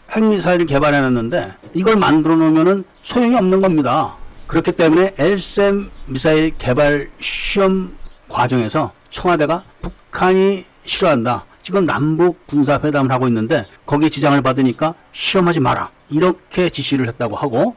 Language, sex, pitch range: Korean, male, 140-190 Hz